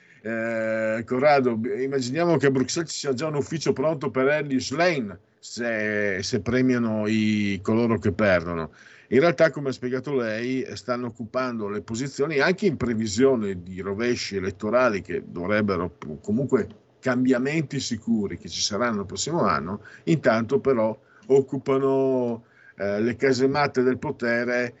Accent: native